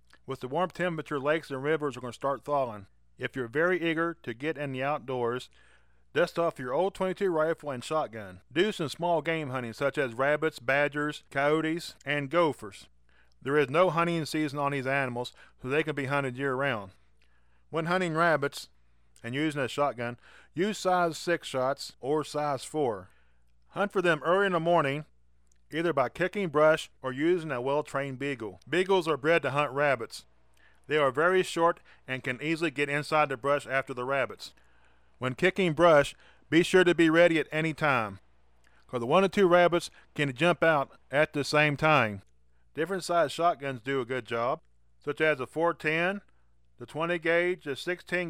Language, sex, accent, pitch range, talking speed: English, male, American, 125-170 Hz, 180 wpm